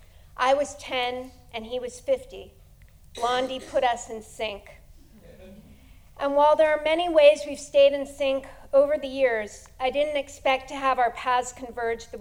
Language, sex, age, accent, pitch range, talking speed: English, female, 50-69, American, 220-270 Hz, 165 wpm